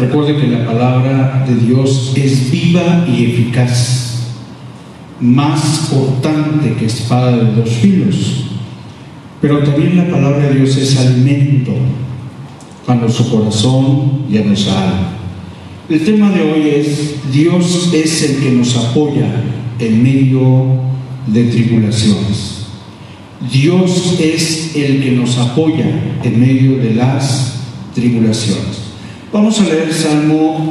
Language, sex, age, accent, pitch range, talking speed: Spanish, male, 50-69, Mexican, 120-155 Hz, 120 wpm